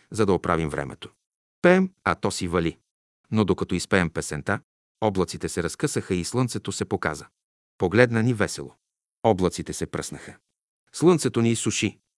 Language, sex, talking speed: Bulgarian, male, 145 wpm